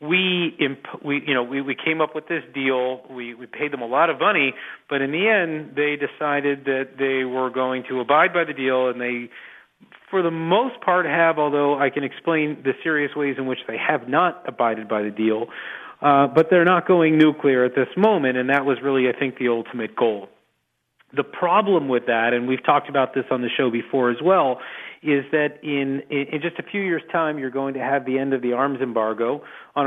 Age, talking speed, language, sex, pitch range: 40-59, 225 wpm, English, male, 125-155 Hz